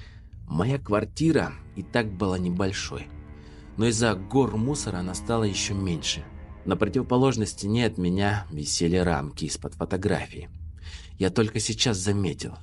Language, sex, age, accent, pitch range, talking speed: Russian, male, 30-49, native, 80-105 Hz, 130 wpm